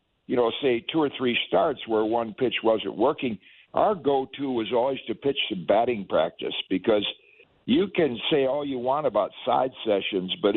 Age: 60-79